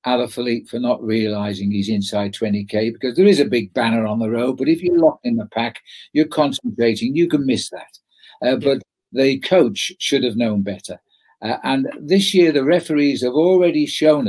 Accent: British